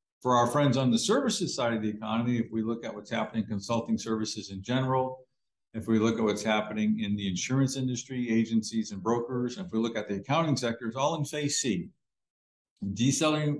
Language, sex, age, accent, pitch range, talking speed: English, male, 50-69, American, 110-130 Hz, 210 wpm